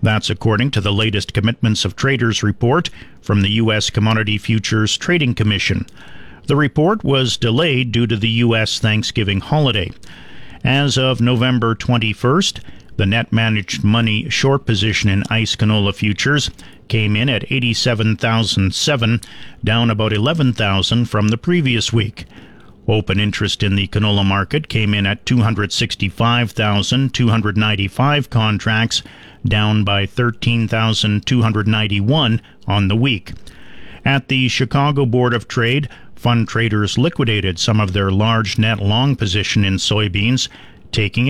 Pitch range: 105-120 Hz